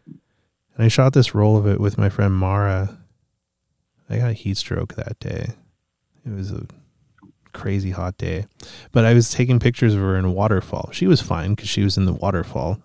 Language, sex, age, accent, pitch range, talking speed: English, male, 30-49, American, 95-115 Hz, 195 wpm